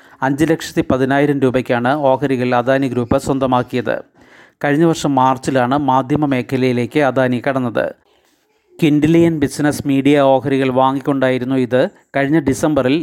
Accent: native